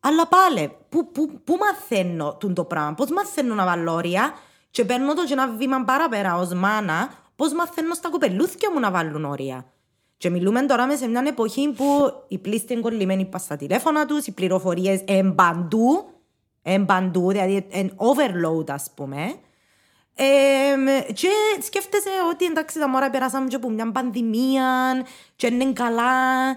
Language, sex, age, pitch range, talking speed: Greek, female, 20-39, 185-265 Hz, 75 wpm